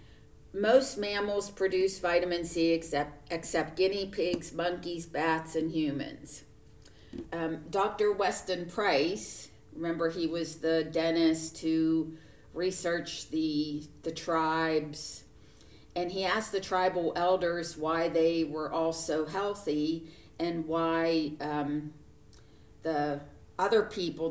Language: English